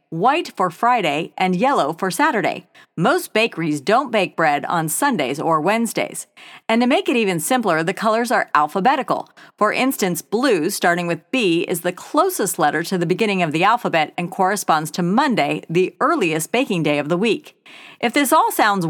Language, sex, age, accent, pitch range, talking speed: English, female, 40-59, American, 175-260 Hz, 180 wpm